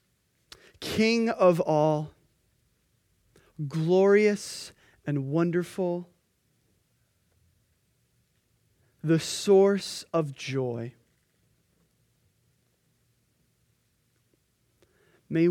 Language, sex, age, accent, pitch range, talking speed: English, male, 20-39, American, 165-215 Hz, 45 wpm